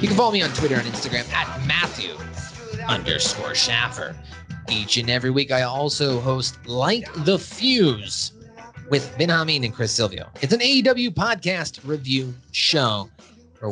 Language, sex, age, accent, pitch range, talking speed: English, male, 30-49, American, 115-170 Hz, 155 wpm